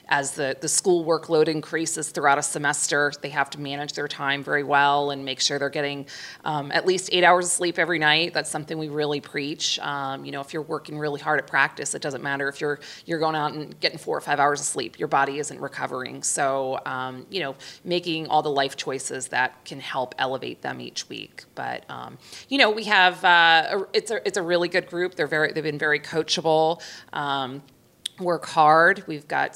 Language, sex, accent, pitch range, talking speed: English, female, American, 140-165 Hz, 220 wpm